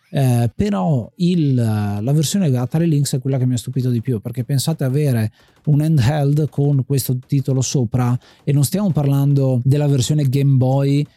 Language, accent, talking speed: Italian, native, 170 wpm